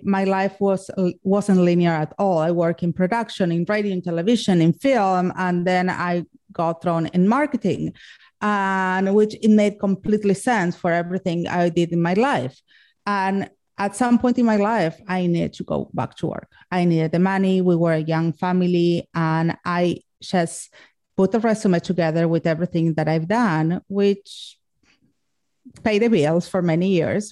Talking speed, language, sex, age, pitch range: 175 wpm, English, female, 30-49, 170-200 Hz